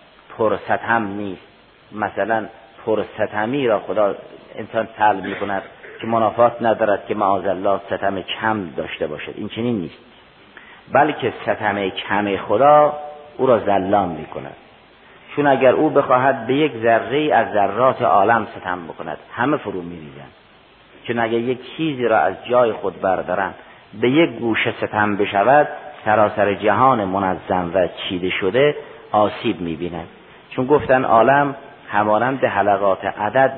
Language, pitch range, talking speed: Persian, 100-135 Hz, 140 wpm